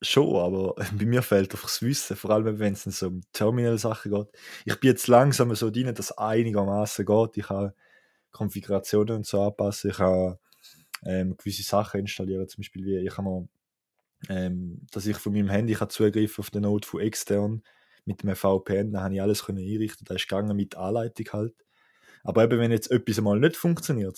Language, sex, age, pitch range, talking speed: English, male, 20-39, 95-110 Hz, 195 wpm